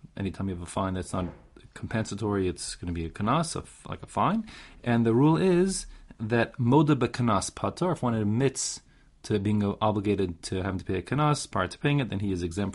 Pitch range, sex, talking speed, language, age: 100-135 Hz, male, 205 wpm, English, 30-49